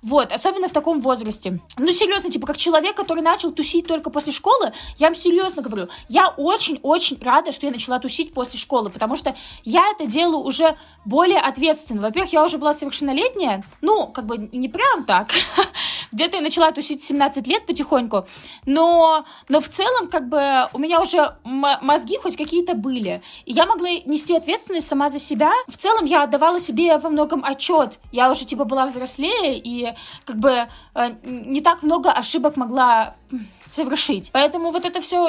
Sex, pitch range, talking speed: female, 265-330 Hz, 175 wpm